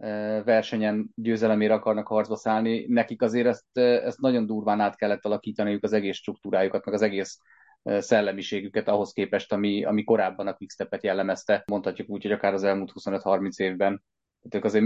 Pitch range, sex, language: 105-120 Hz, male, Hungarian